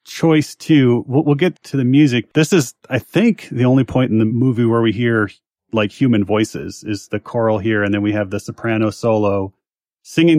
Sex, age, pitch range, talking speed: male, 30-49, 110-130 Hz, 210 wpm